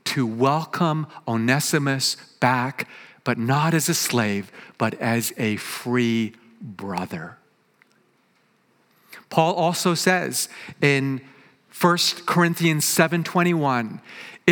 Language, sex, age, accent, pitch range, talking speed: English, male, 50-69, American, 145-195 Hz, 85 wpm